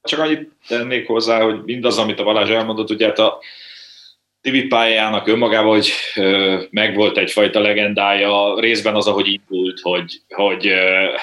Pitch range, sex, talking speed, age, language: 95-115 Hz, male, 140 wpm, 30-49, Hungarian